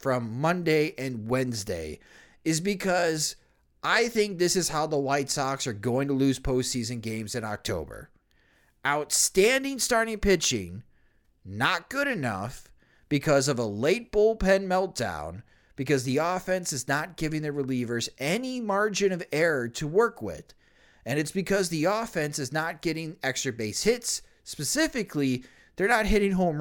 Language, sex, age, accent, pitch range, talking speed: English, male, 30-49, American, 135-210 Hz, 145 wpm